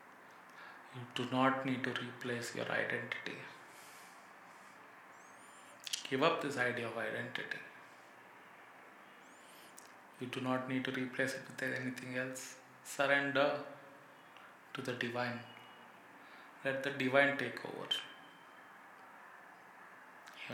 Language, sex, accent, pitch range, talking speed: English, male, Indian, 120-135 Hz, 100 wpm